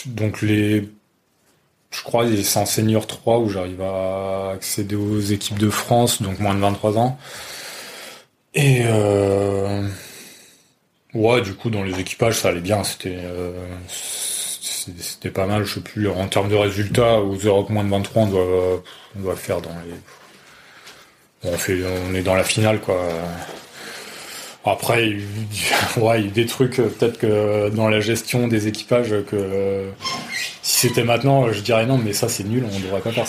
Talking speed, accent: 175 wpm, French